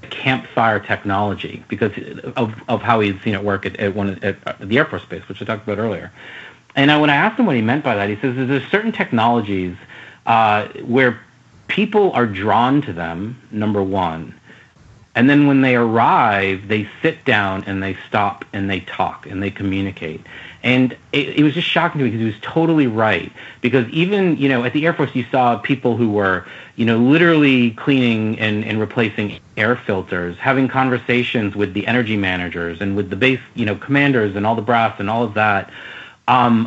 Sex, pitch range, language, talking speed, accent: male, 100-130 Hz, English, 200 wpm, American